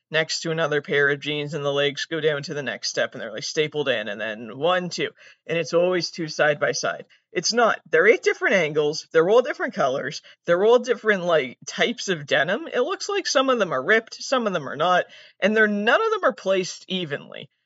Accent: American